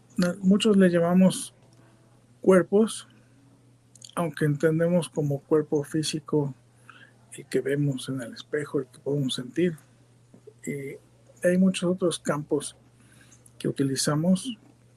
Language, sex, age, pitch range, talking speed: Spanish, male, 50-69, 130-165 Hz, 105 wpm